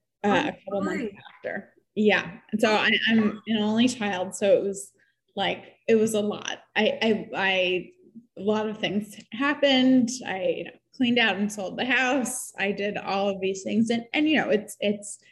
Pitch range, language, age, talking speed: 190-215 Hz, English, 20-39, 190 wpm